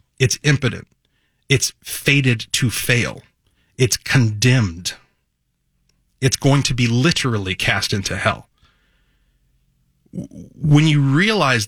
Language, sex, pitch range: English, male, 105-135 Hz